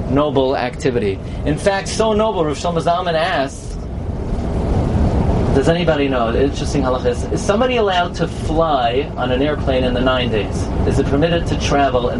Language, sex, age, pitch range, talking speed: English, male, 40-59, 120-165 Hz, 170 wpm